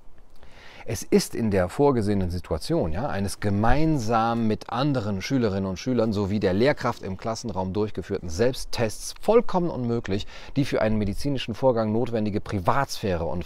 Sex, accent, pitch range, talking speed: male, German, 100-130 Hz, 135 wpm